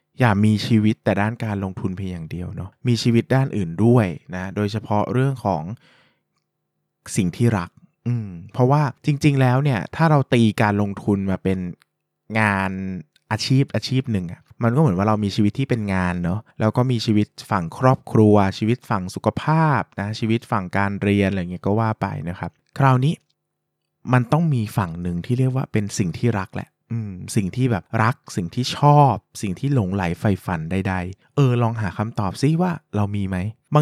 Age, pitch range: 20-39, 100-130 Hz